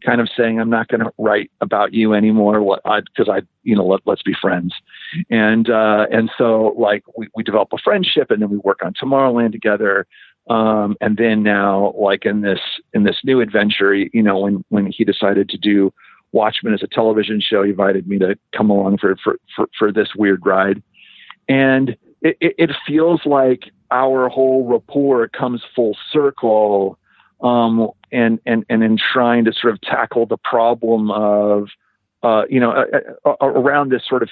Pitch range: 105-120 Hz